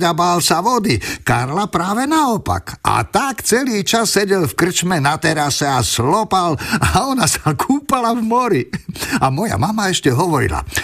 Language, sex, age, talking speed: Slovak, male, 50-69, 155 wpm